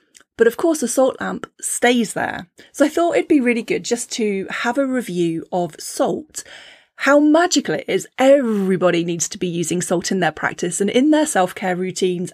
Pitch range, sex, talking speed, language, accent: 185-255 Hz, female, 195 wpm, English, British